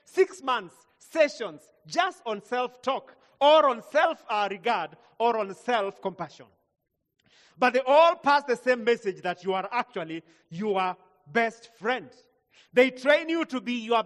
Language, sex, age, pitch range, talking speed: English, male, 40-59, 200-285 Hz, 135 wpm